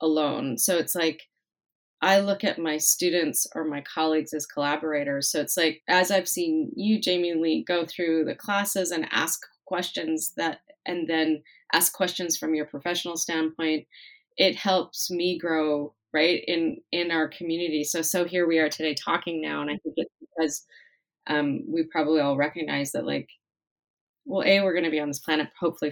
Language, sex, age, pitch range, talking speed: English, female, 30-49, 155-195 Hz, 180 wpm